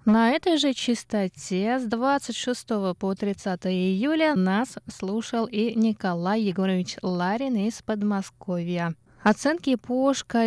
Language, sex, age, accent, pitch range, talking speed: Russian, female, 20-39, native, 185-240 Hz, 110 wpm